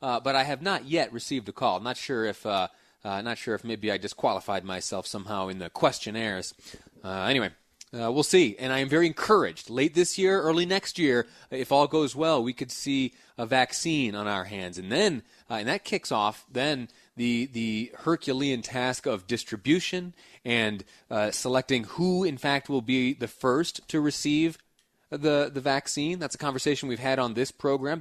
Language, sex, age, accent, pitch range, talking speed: English, male, 30-49, American, 115-145 Hz, 195 wpm